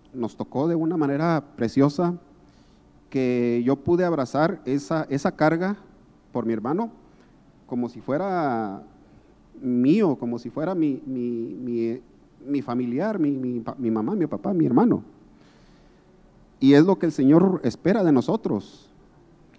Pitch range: 120-155 Hz